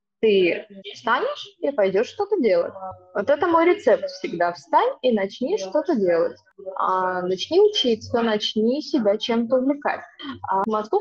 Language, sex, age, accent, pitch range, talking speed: Russian, female, 20-39, native, 205-285 Hz, 130 wpm